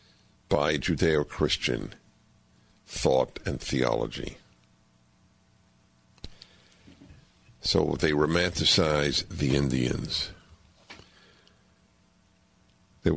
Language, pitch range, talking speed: English, 80-115 Hz, 55 wpm